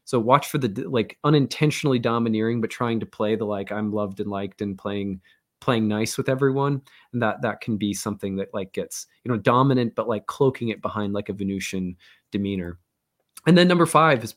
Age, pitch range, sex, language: 20-39, 110-135 Hz, male, English